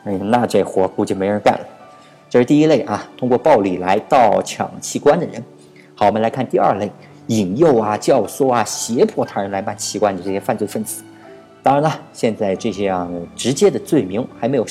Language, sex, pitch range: Chinese, male, 100-165 Hz